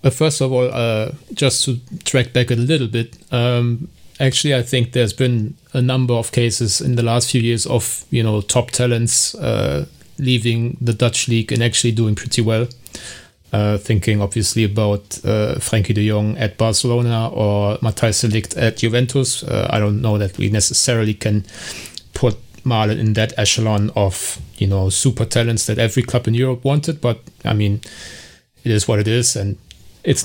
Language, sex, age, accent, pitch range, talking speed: English, male, 30-49, German, 110-125 Hz, 180 wpm